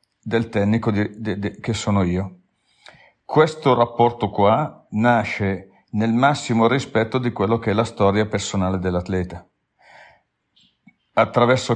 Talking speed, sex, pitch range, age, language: 105 wpm, male, 100-115 Hz, 50-69, Italian